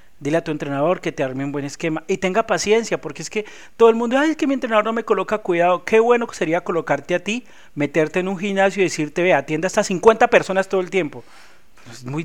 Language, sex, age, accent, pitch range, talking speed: Spanish, male, 40-59, Colombian, 150-195 Hz, 255 wpm